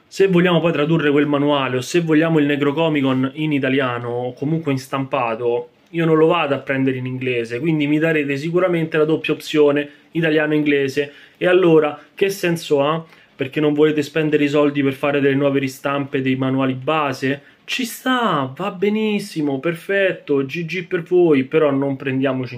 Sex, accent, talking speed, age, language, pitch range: male, native, 165 wpm, 20-39, Italian, 135-160 Hz